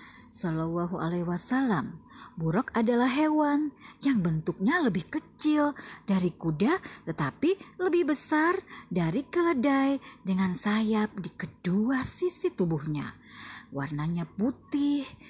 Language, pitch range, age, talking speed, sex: Indonesian, 195-320 Hz, 30-49, 100 wpm, female